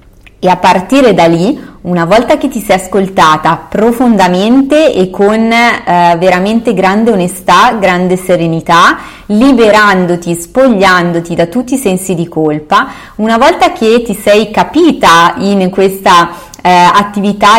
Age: 20-39